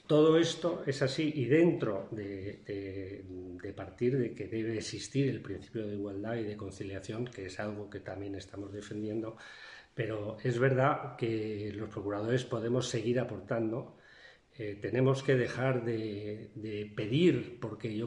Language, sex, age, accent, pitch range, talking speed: Spanish, male, 40-59, Spanish, 105-140 Hz, 150 wpm